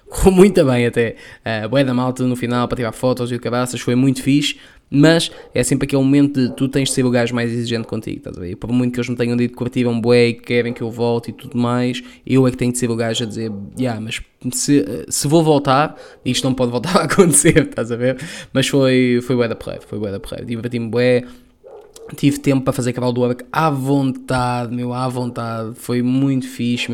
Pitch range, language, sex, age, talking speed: 120-135 Hz, Portuguese, male, 20-39, 245 wpm